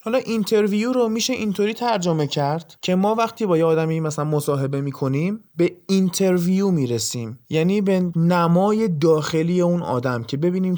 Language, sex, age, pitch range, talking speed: Persian, male, 20-39, 140-195 Hz, 150 wpm